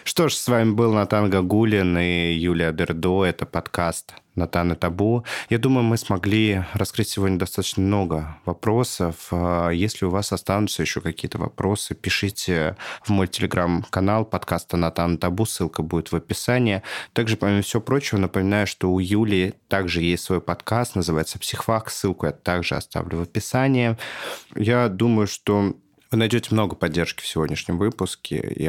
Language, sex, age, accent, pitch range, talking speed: Russian, male, 20-39, native, 85-110 Hz, 150 wpm